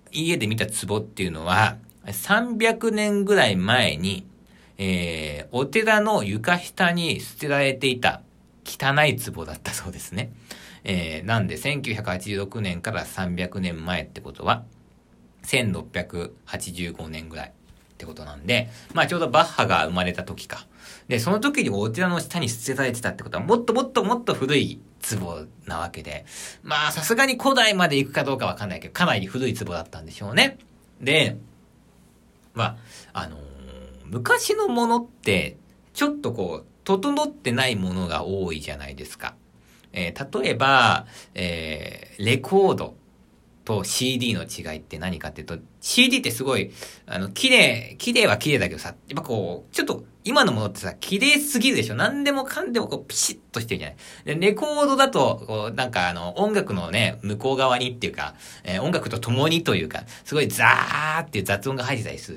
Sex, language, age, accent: male, Japanese, 50-69, native